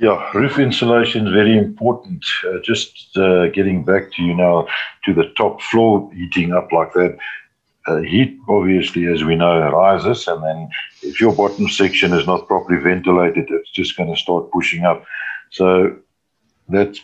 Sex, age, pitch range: male, 60-79, 90-110 Hz